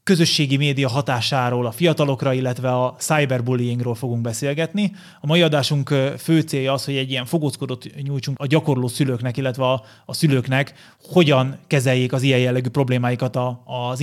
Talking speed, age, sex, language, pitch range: 145 wpm, 30-49, male, Hungarian, 130-155 Hz